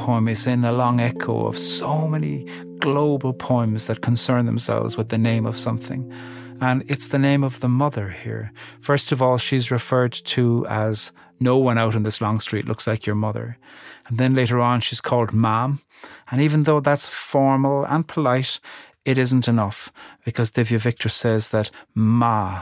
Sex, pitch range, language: male, 110-130 Hz, English